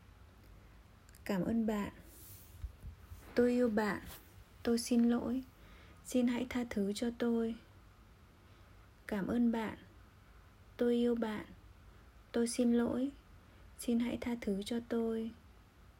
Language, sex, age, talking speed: Vietnamese, female, 20-39, 115 wpm